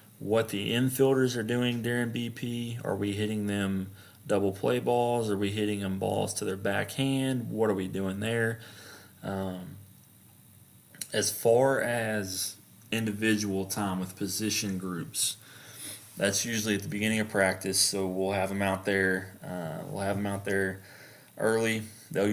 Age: 30-49